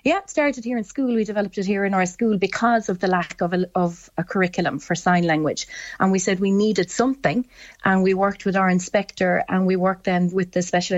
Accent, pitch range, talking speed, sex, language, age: Irish, 175-200 Hz, 235 wpm, female, English, 30-49